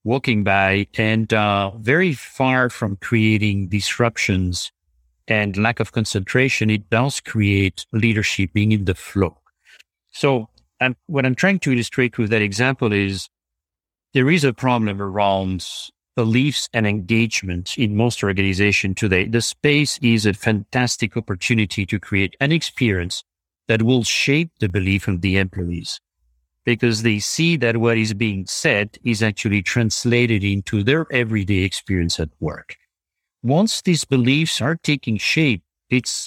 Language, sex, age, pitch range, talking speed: English, male, 50-69, 100-125 Hz, 140 wpm